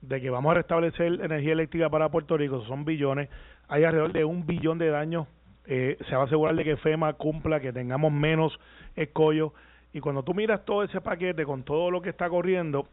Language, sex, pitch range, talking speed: Spanish, male, 145-175 Hz, 210 wpm